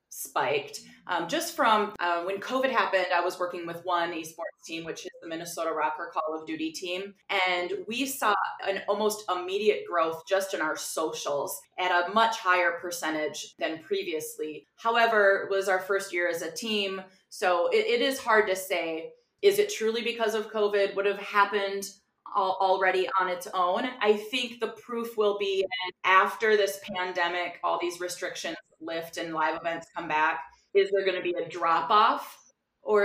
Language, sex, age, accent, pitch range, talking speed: English, female, 30-49, American, 170-220 Hz, 180 wpm